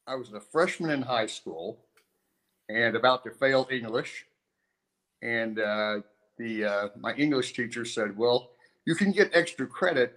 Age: 50-69